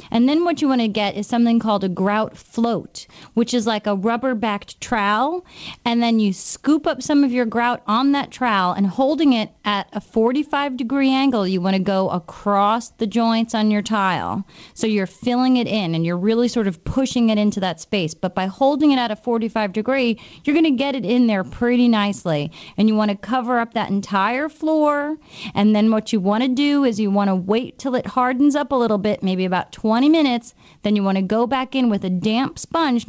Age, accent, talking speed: 30-49, American, 225 wpm